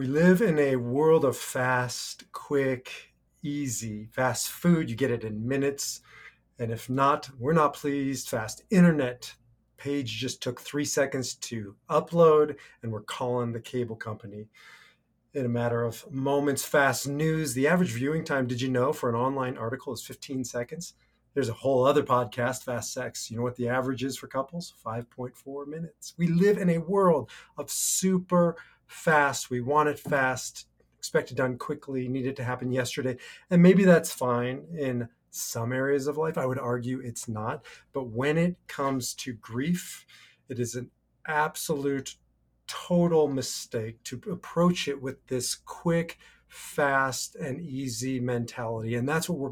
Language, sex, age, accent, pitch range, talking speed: English, male, 40-59, American, 120-145 Hz, 165 wpm